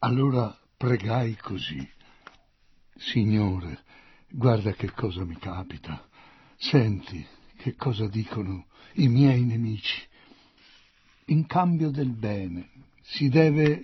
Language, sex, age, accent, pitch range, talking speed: Italian, male, 60-79, native, 110-160 Hz, 95 wpm